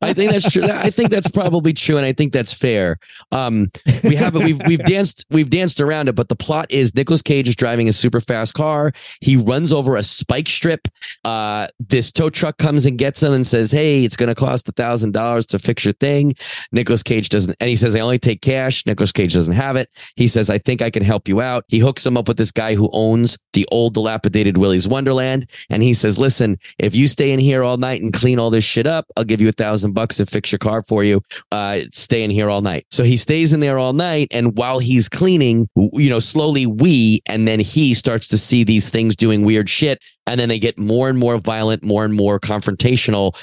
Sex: male